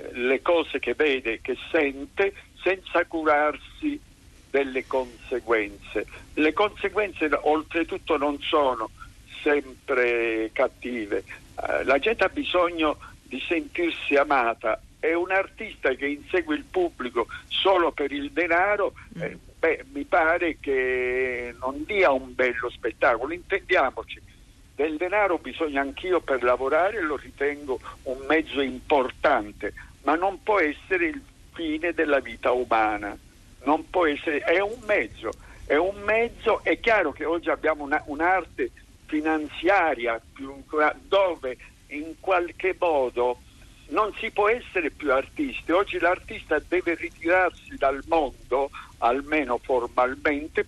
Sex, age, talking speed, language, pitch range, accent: male, 60-79, 125 wpm, Italian, 130-190 Hz, native